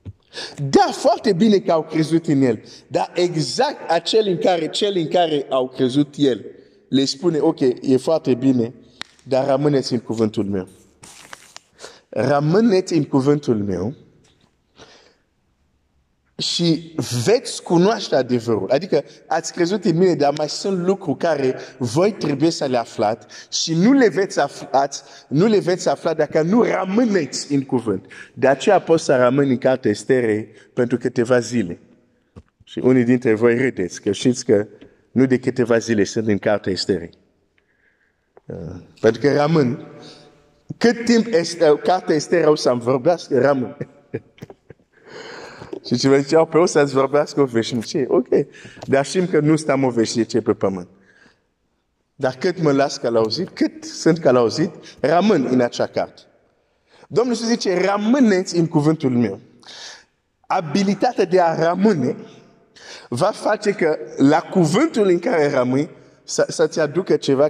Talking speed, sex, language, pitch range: 140 wpm, male, Romanian, 125-180 Hz